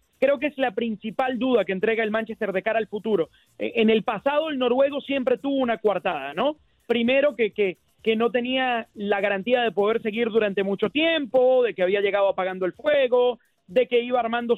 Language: Spanish